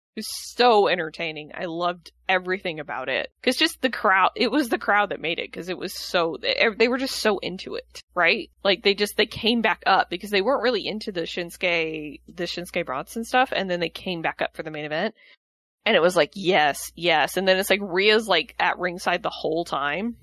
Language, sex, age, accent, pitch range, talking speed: English, female, 20-39, American, 175-245 Hz, 230 wpm